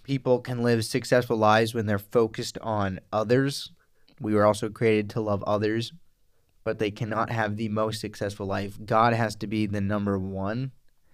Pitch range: 105-120 Hz